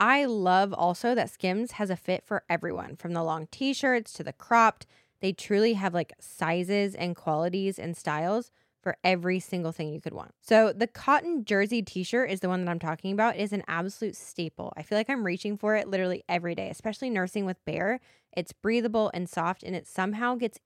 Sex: female